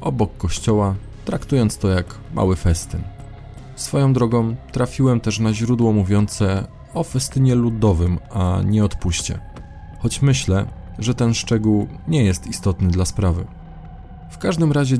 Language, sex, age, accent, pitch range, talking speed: Polish, male, 20-39, native, 95-115 Hz, 130 wpm